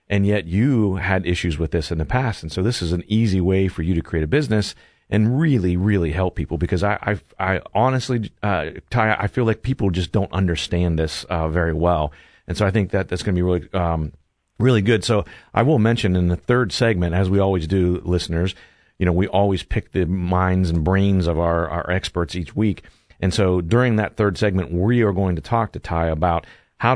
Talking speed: 225 wpm